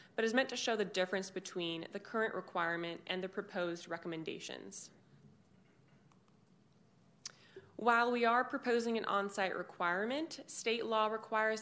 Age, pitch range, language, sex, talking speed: 20-39, 175-205 Hz, English, female, 130 wpm